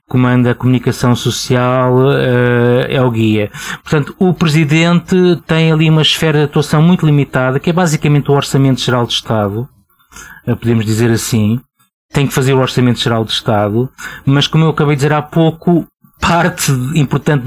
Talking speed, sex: 160 wpm, male